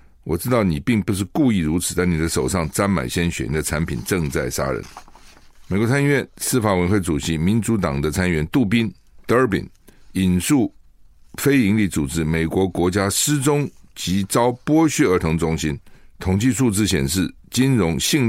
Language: Chinese